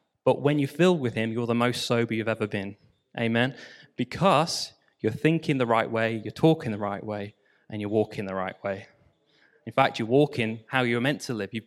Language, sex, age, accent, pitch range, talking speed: English, male, 20-39, British, 115-135 Hz, 210 wpm